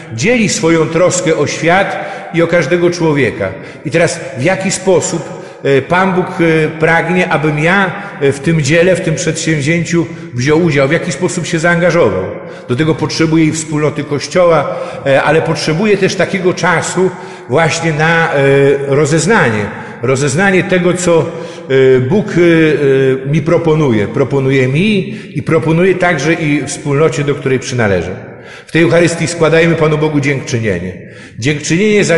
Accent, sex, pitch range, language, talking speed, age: native, male, 145-175 Hz, Polish, 130 wpm, 50-69